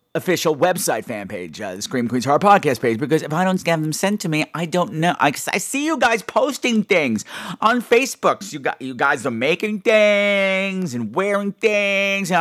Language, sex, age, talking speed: English, male, 50-69, 220 wpm